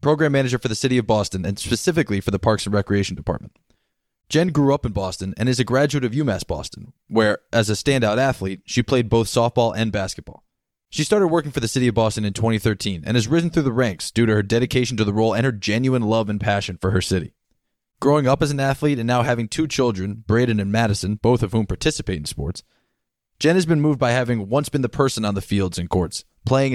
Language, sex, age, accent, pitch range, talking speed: English, male, 20-39, American, 105-130 Hz, 235 wpm